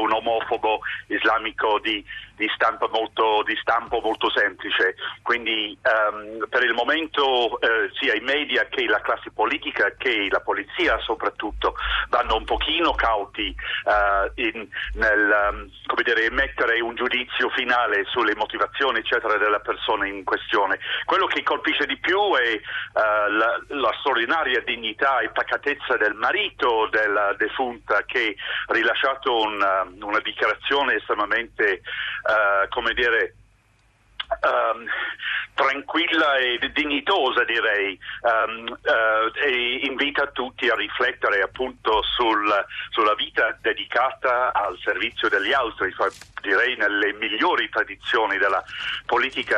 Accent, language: native, Italian